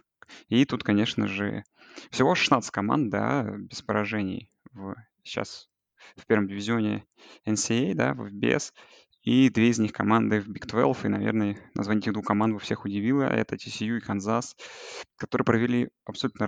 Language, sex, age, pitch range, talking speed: Russian, male, 20-39, 105-115 Hz, 155 wpm